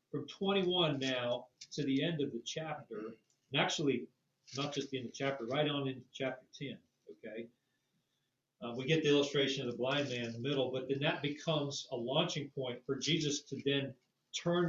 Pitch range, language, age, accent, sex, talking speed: 130-165 Hz, English, 40-59, American, male, 185 wpm